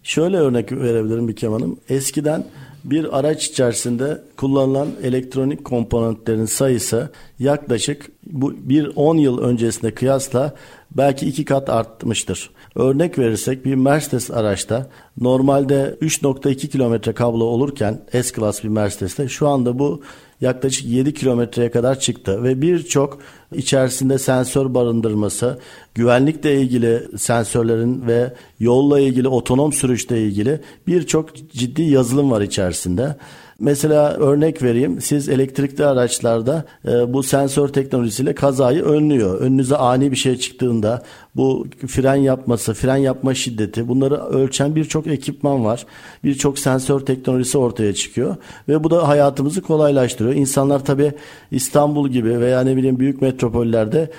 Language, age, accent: Turkish, 50-69, native